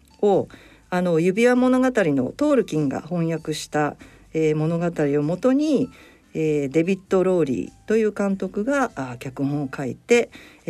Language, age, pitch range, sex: Japanese, 50-69, 160-225 Hz, female